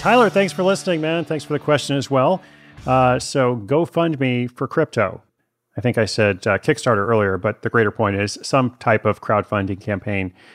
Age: 40-59